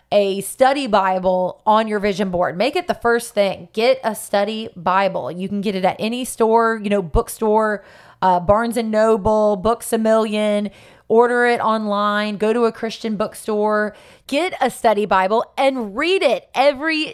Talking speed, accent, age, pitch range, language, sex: 170 wpm, American, 20-39, 210-270 Hz, English, female